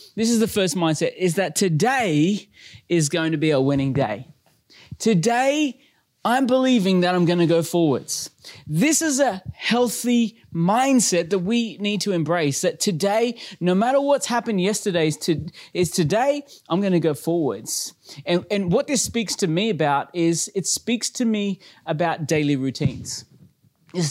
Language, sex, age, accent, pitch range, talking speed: English, male, 30-49, Australian, 170-225 Hz, 160 wpm